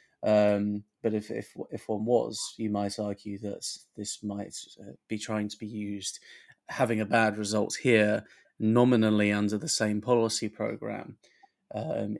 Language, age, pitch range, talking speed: English, 30-49, 100-110 Hz, 150 wpm